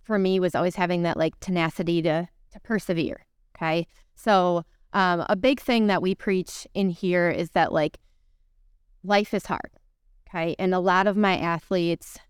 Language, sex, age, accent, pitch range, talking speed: English, female, 20-39, American, 170-190 Hz, 170 wpm